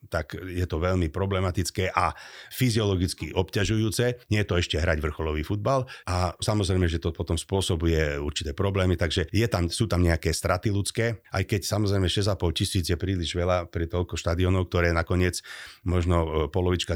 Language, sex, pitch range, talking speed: Slovak, male, 80-95 Hz, 165 wpm